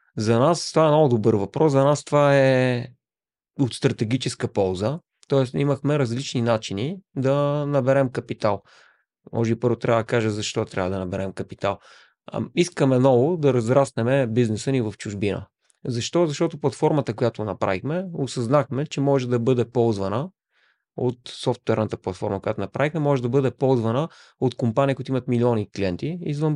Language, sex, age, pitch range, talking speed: Bulgarian, male, 30-49, 115-140 Hz, 150 wpm